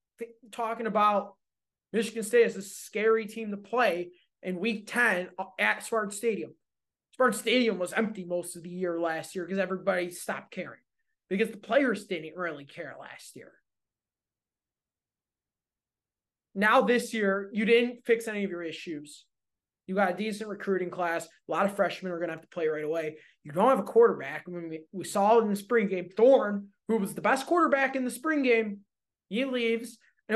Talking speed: 180 wpm